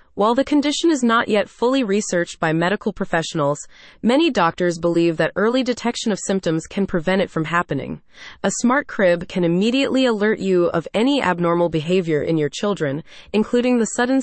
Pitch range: 170-230 Hz